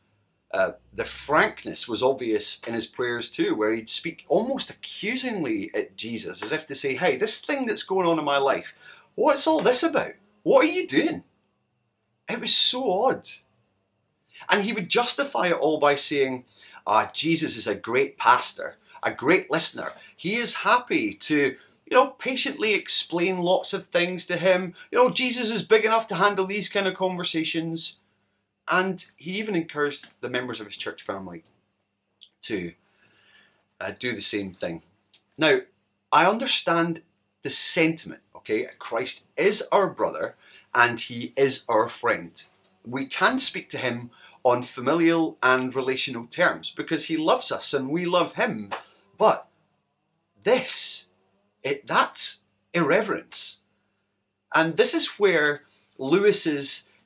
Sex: male